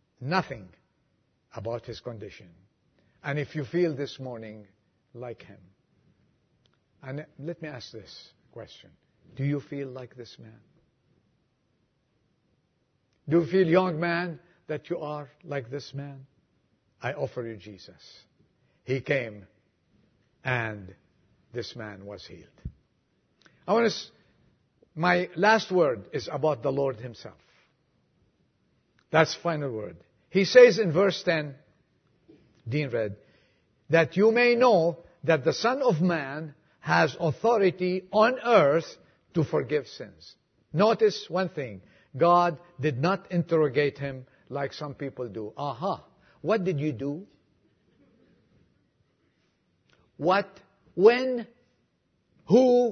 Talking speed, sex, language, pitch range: 120 wpm, male, English, 130-200 Hz